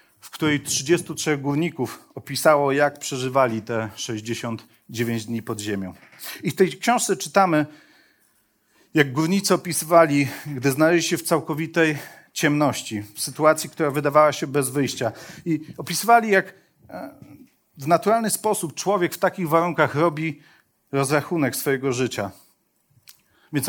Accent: native